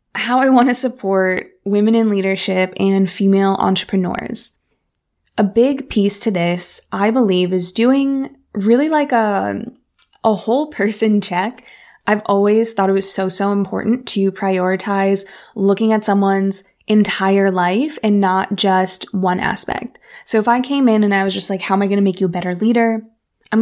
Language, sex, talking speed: English, female, 175 wpm